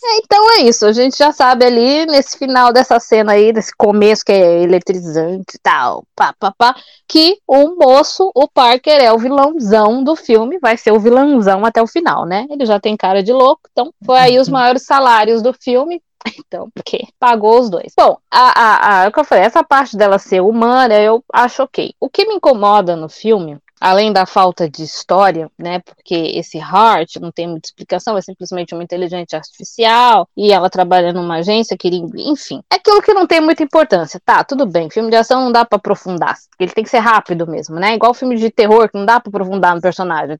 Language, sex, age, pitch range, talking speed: Portuguese, female, 20-39, 195-265 Hz, 205 wpm